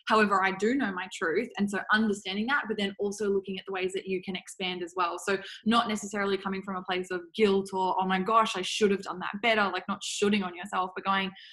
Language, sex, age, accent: English, female, 10-29, Australian